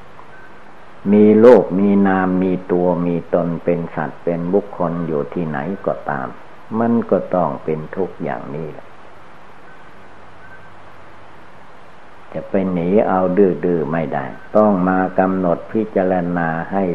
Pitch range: 85-100 Hz